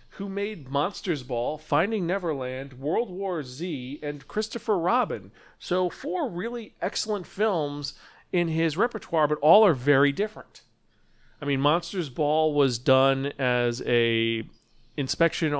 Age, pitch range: 40-59, 125-175 Hz